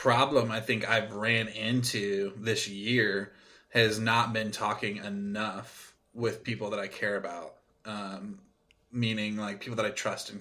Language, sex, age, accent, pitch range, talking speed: English, male, 20-39, American, 105-120 Hz, 155 wpm